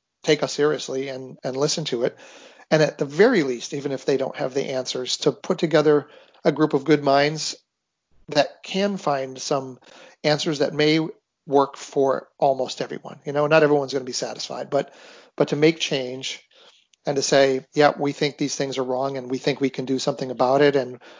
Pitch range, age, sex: 130-150 Hz, 40-59, male